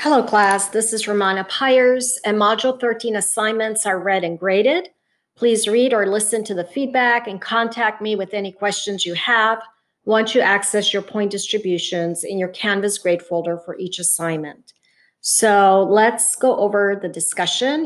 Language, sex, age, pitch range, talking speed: English, female, 40-59, 180-220 Hz, 165 wpm